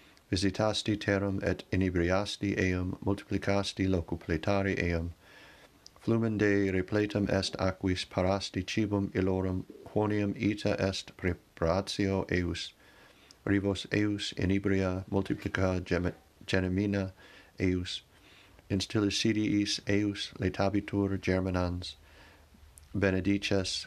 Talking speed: 80 wpm